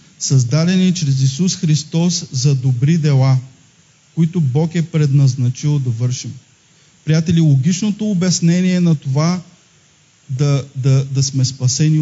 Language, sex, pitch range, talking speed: Bulgarian, male, 135-165 Hz, 115 wpm